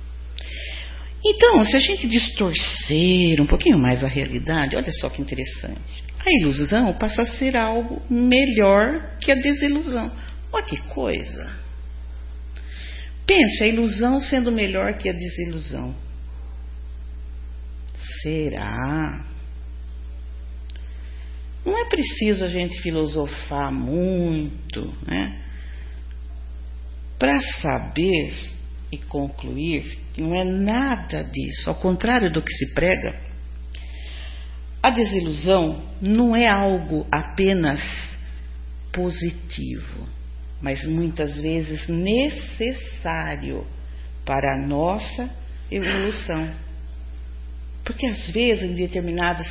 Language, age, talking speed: Portuguese, 50-69, 95 wpm